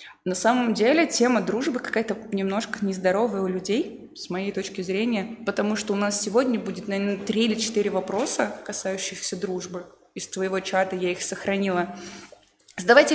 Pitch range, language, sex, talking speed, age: 200-240 Hz, Russian, female, 155 wpm, 20-39